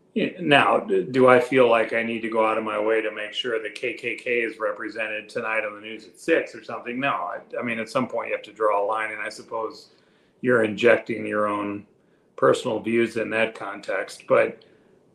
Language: English